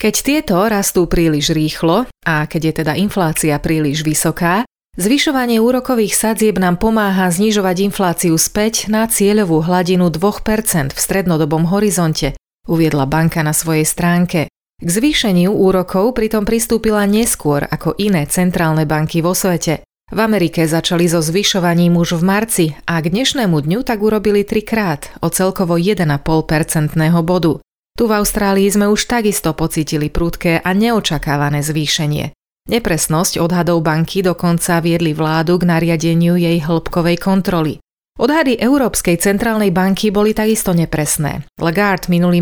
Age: 30-49